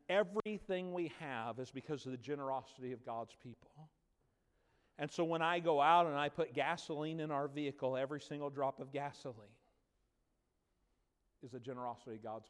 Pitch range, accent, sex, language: 130-170 Hz, American, male, English